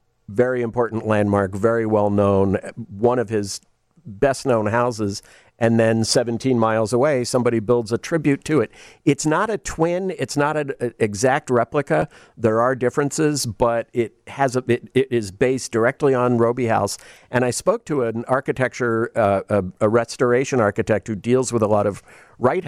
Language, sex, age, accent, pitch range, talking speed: English, male, 50-69, American, 110-135 Hz, 170 wpm